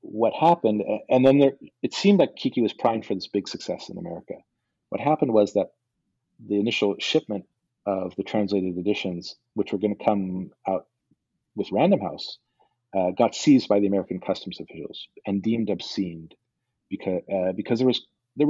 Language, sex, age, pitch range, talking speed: English, male, 40-59, 100-130 Hz, 175 wpm